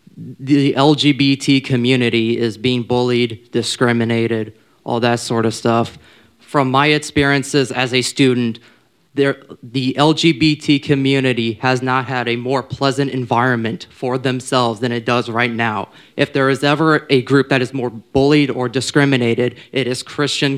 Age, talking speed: 20-39, 145 wpm